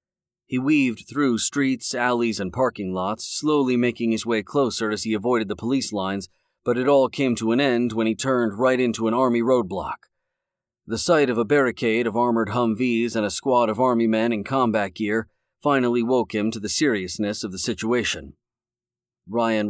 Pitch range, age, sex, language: 110-130 Hz, 40-59, male, English